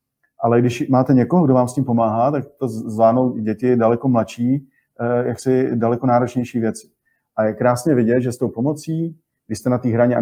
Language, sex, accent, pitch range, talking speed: Czech, male, native, 115-140 Hz, 195 wpm